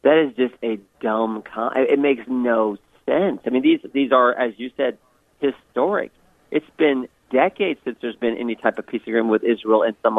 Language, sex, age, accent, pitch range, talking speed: English, male, 40-59, American, 115-145 Hz, 200 wpm